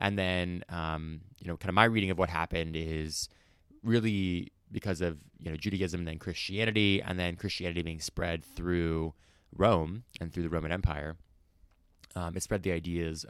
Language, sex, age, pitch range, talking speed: English, male, 20-39, 80-90 Hz, 175 wpm